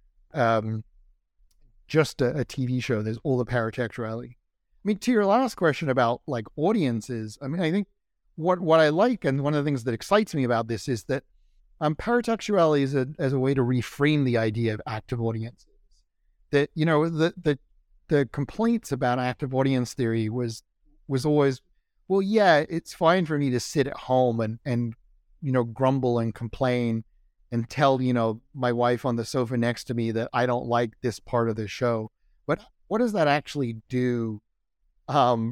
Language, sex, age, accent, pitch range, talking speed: English, male, 40-59, American, 115-155 Hz, 190 wpm